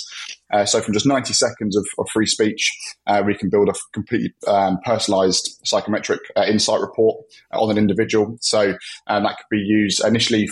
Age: 20-39